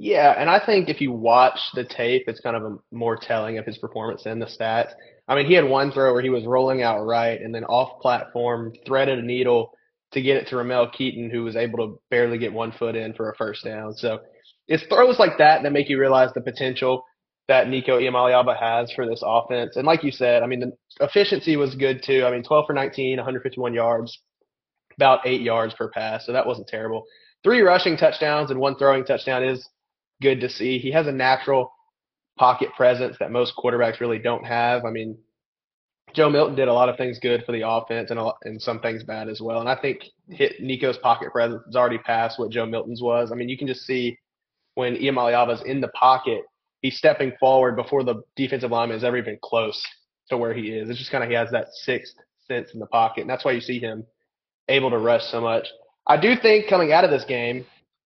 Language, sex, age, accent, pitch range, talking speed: English, male, 20-39, American, 115-135 Hz, 225 wpm